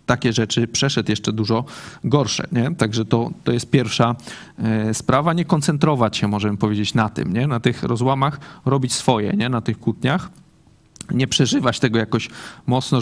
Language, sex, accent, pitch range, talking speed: Polish, male, native, 110-130 Hz, 160 wpm